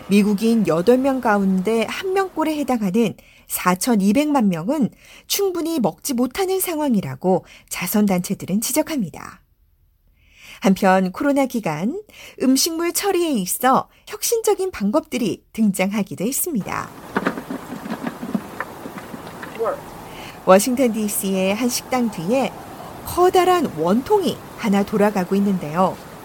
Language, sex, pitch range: Korean, female, 190-290 Hz